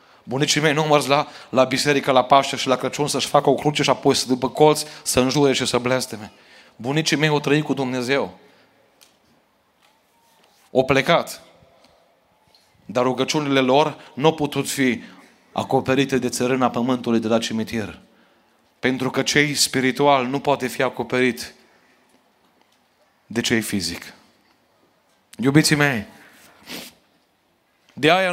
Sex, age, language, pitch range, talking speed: male, 30-49, Romanian, 130-150 Hz, 135 wpm